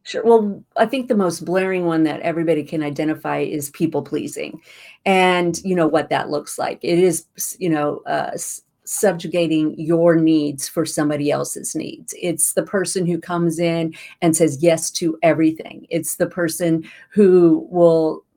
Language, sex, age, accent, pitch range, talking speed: English, female, 50-69, American, 160-185 Hz, 160 wpm